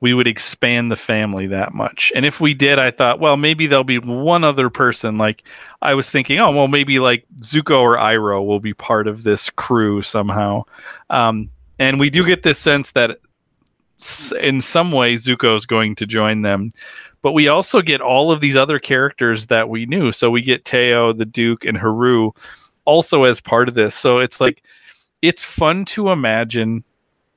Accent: American